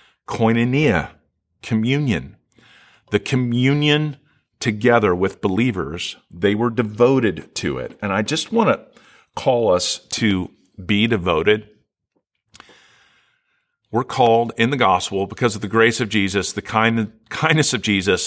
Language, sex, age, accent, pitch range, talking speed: English, male, 40-59, American, 110-145 Hz, 120 wpm